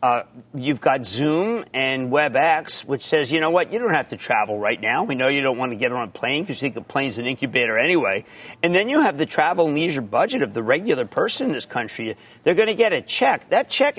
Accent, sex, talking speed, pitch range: American, male, 260 wpm, 140-210 Hz